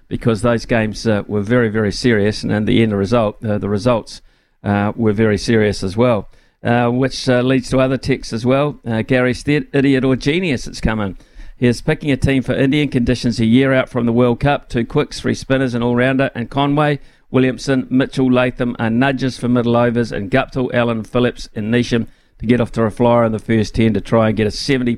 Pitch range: 115-130 Hz